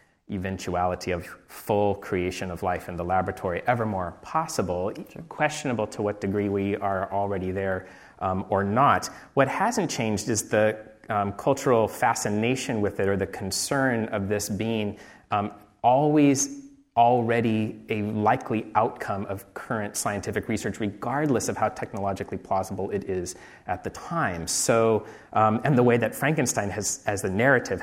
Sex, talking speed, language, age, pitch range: male, 155 wpm, English, 30-49, 95-115 Hz